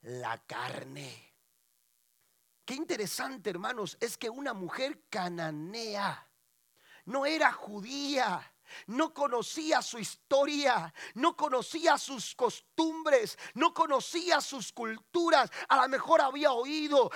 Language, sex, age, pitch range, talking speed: Spanish, male, 40-59, 270-335 Hz, 105 wpm